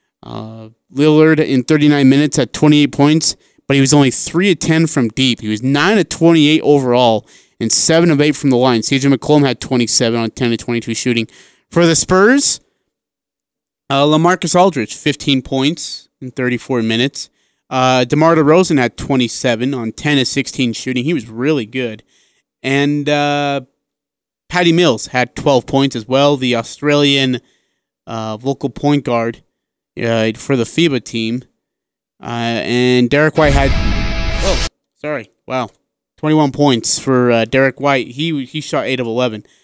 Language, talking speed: English, 155 wpm